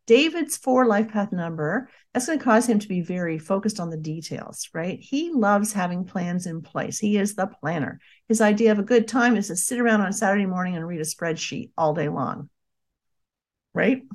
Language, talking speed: English, 210 wpm